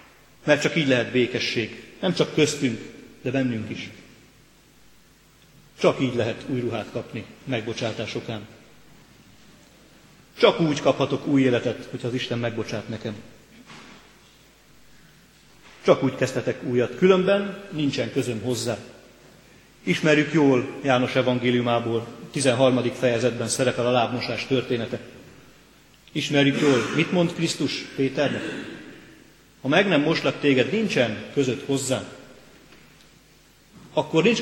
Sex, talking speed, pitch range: male, 110 wpm, 120-145 Hz